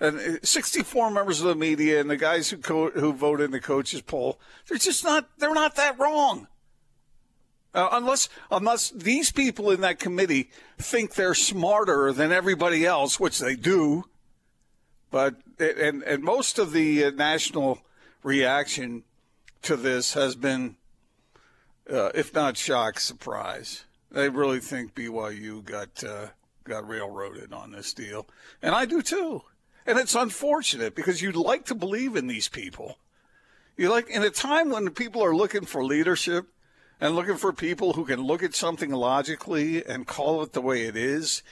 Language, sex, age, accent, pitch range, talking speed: English, male, 50-69, American, 135-230 Hz, 160 wpm